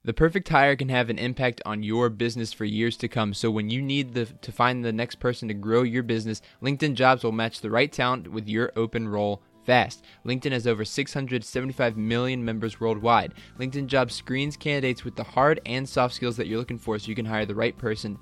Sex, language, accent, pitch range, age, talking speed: male, English, American, 110-130 Hz, 20-39, 220 wpm